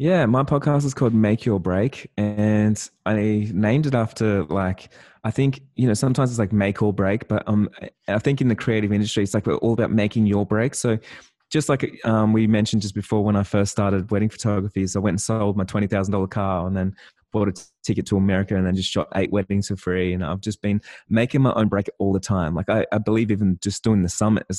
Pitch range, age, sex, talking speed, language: 100-115 Hz, 20-39, male, 235 wpm, English